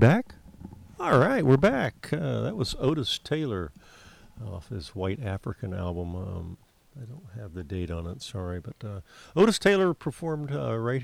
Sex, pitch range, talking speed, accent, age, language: male, 95-130 Hz, 170 wpm, American, 50-69, English